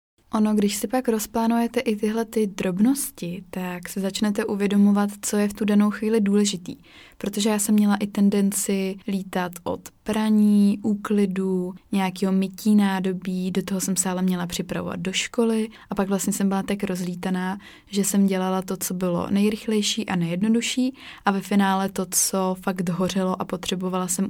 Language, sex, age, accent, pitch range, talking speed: Czech, female, 20-39, native, 185-205 Hz, 170 wpm